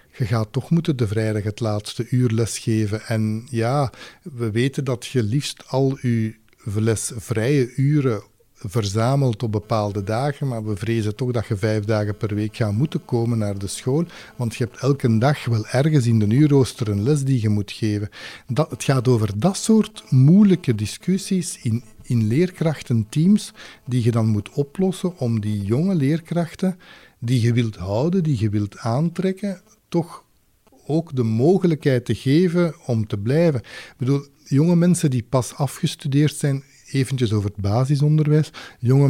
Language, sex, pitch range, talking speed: Dutch, male, 115-150 Hz, 165 wpm